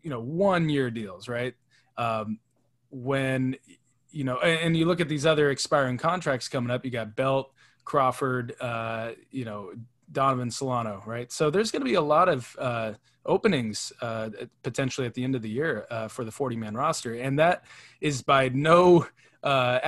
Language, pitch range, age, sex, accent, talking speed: English, 120-150 Hz, 20-39, male, American, 185 wpm